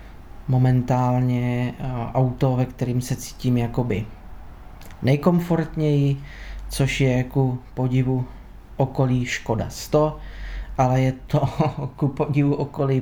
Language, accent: Czech, native